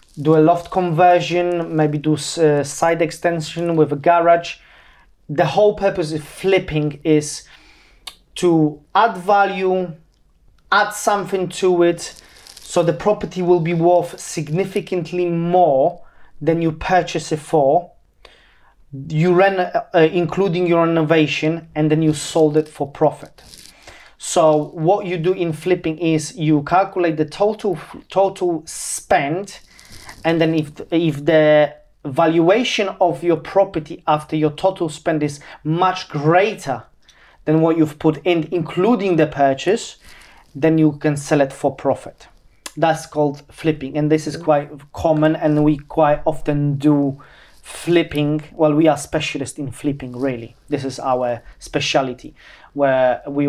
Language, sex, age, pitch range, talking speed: English, male, 30-49, 150-175 Hz, 135 wpm